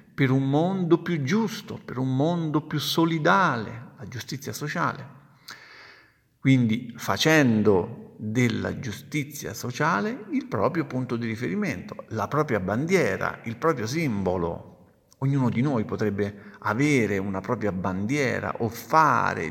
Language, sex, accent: Italian, male, native